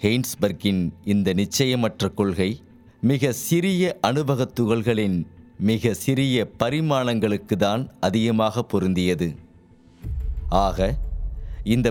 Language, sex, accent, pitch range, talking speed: Tamil, male, native, 85-125 Hz, 75 wpm